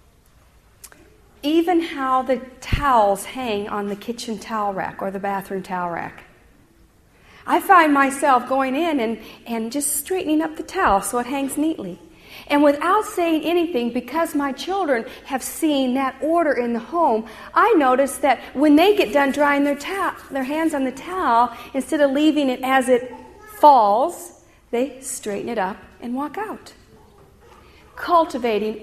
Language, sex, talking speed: English, female, 155 wpm